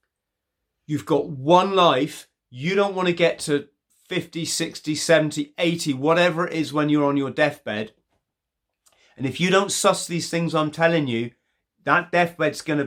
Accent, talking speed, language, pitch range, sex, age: British, 165 wpm, English, 125-160 Hz, male, 30-49